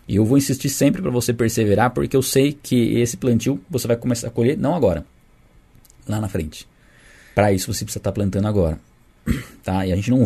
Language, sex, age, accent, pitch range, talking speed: Portuguese, male, 20-39, Brazilian, 95-120 Hz, 210 wpm